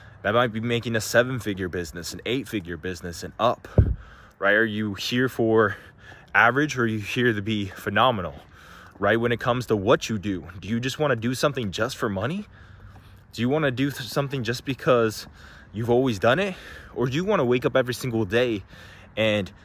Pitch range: 100-130 Hz